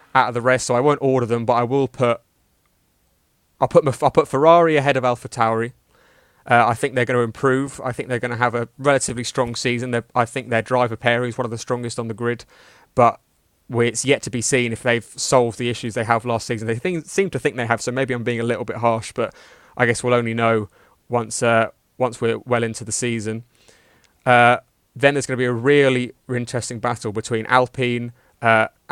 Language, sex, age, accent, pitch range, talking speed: English, male, 20-39, British, 115-130 Hz, 230 wpm